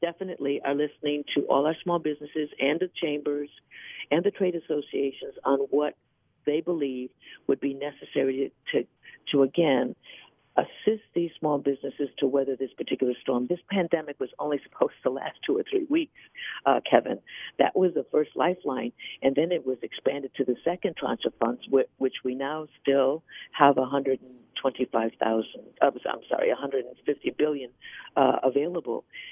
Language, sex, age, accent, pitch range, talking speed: English, female, 60-79, American, 135-180 Hz, 155 wpm